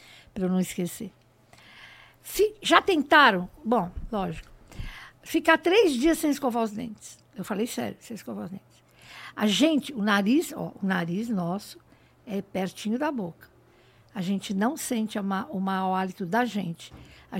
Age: 60-79